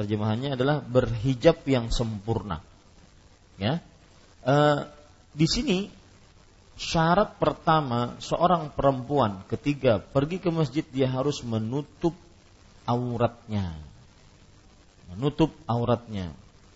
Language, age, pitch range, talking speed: Malay, 40-59, 100-150 Hz, 80 wpm